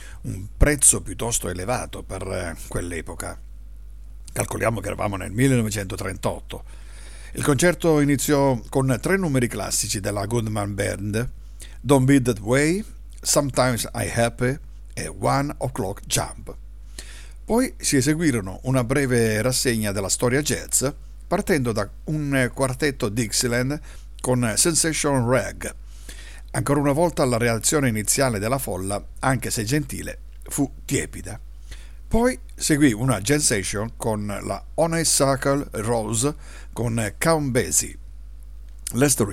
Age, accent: 50-69, native